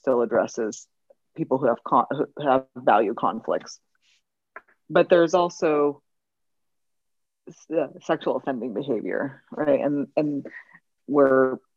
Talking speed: 105 wpm